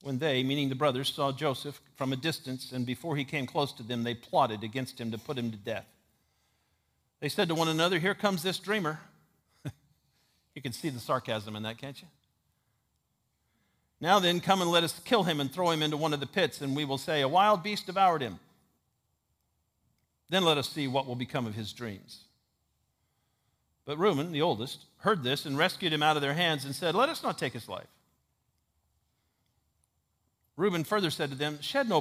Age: 50-69